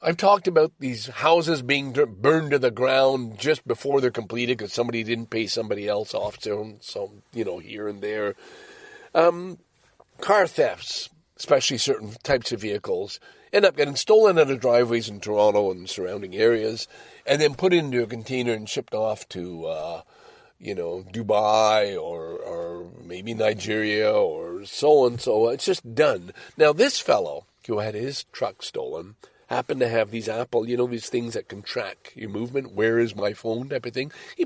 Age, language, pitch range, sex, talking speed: 50-69, English, 115-185 Hz, male, 185 wpm